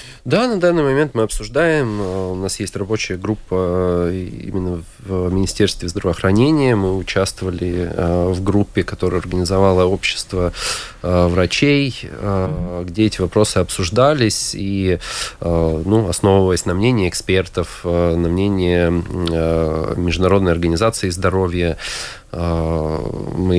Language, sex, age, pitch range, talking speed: Russian, male, 20-39, 85-105 Hz, 100 wpm